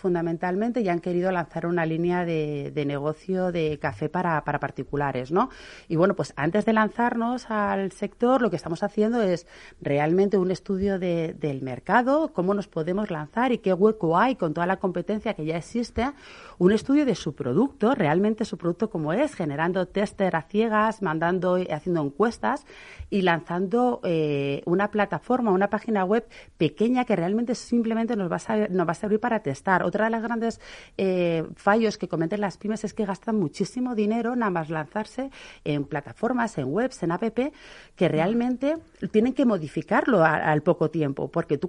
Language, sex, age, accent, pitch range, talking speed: Spanish, female, 30-49, Spanish, 160-225 Hz, 175 wpm